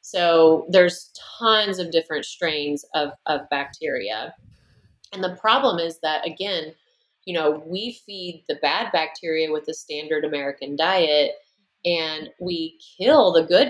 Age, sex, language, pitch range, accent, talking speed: 30-49, female, English, 155-185 Hz, American, 140 wpm